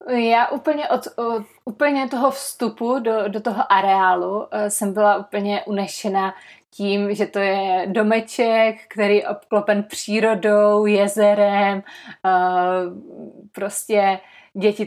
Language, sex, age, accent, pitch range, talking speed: Czech, female, 20-39, native, 195-220 Hz, 110 wpm